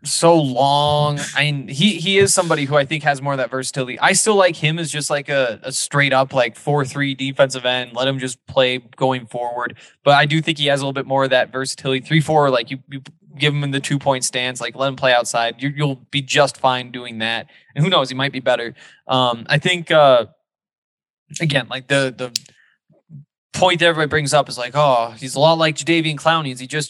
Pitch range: 130-155 Hz